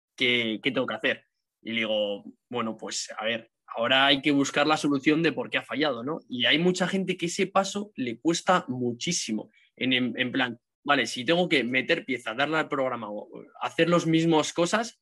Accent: Spanish